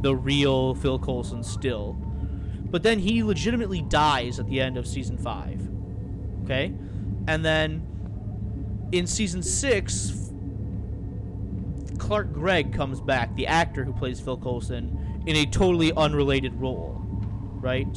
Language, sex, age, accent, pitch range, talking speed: English, male, 30-49, American, 100-140 Hz, 125 wpm